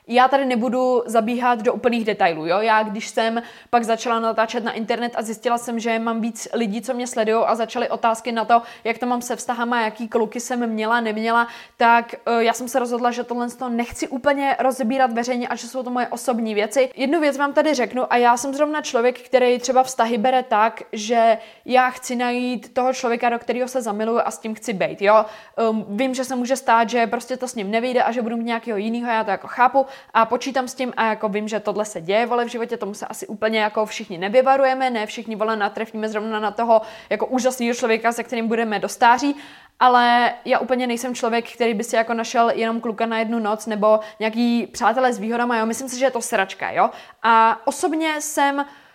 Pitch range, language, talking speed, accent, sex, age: 225-255 Hz, Czech, 225 wpm, native, female, 20-39